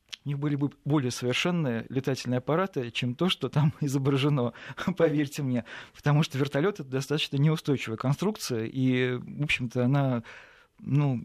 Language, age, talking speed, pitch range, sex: Russian, 40-59, 150 wpm, 130-170 Hz, male